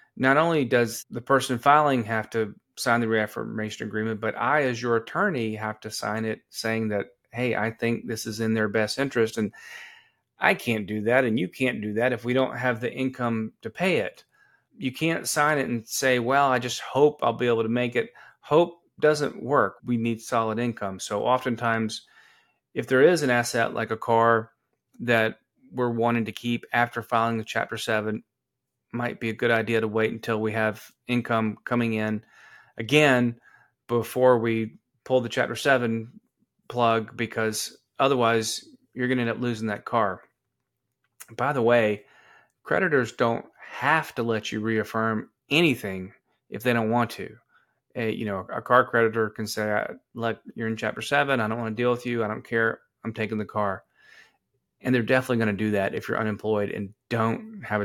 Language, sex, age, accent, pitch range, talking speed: English, male, 30-49, American, 110-125 Hz, 190 wpm